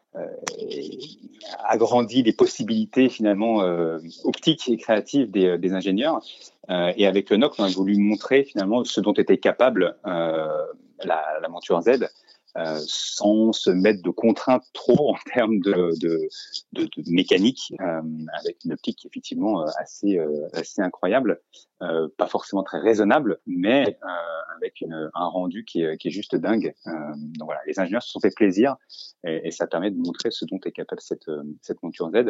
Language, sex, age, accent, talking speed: French, male, 30-49, French, 175 wpm